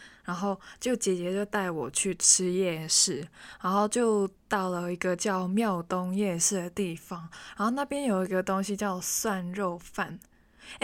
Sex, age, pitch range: female, 20-39, 180-205 Hz